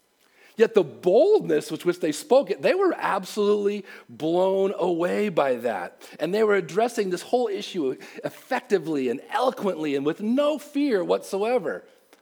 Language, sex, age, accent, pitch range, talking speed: English, male, 40-59, American, 130-210 Hz, 140 wpm